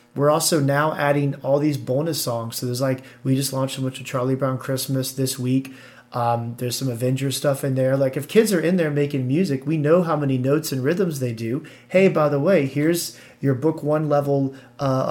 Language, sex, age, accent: English, male, 30-49, American